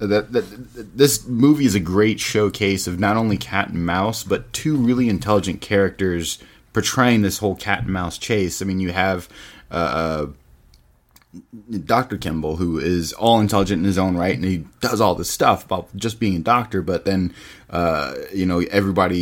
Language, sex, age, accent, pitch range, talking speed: English, male, 20-39, American, 85-100 Hz, 185 wpm